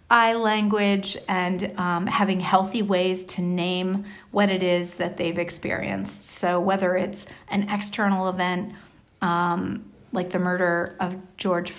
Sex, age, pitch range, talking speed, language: female, 40-59, 180-205 Hz, 130 wpm, English